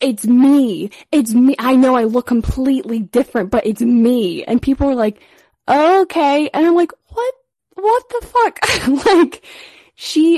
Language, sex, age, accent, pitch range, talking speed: English, female, 10-29, American, 190-260 Hz, 155 wpm